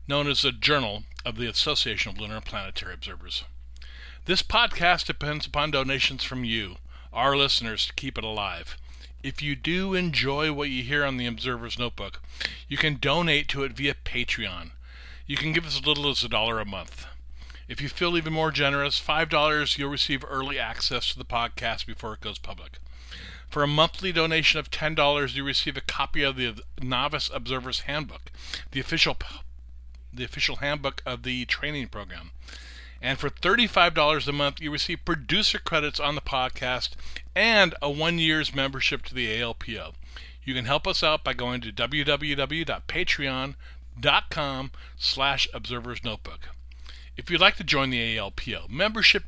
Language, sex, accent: English, male, American